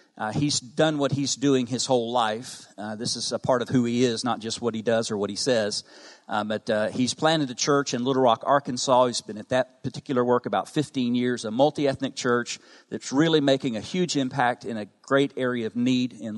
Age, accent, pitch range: 40-59, American, 115-135 Hz